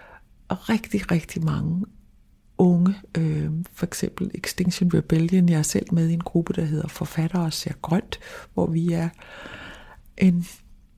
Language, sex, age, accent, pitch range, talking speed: Danish, female, 60-79, native, 165-185 Hz, 140 wpm